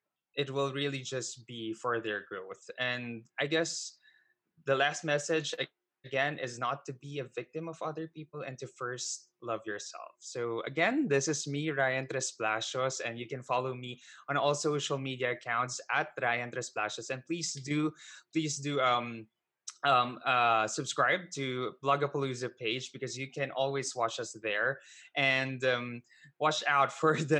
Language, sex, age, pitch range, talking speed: English, male, 20-39, 125-150 Hz, 160 wpm